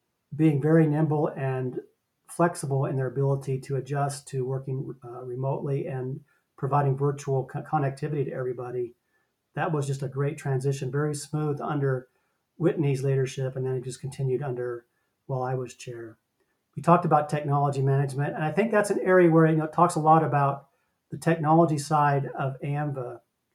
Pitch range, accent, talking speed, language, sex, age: 135-155 Hz, American, 160 wpm, English, male, 40-59